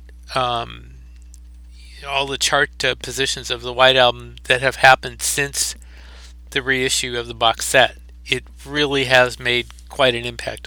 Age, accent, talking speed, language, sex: 50-69, American, 150 wpm, English, male